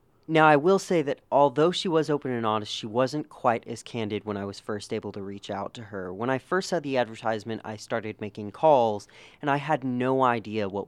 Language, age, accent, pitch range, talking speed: English, 30-49, American, 105-135 Hz, 230 wpm